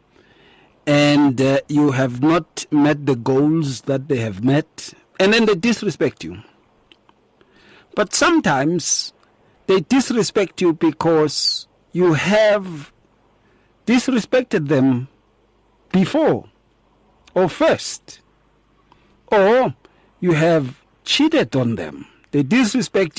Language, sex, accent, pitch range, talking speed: English, male, South African, 140-195 Hz, 100 wpm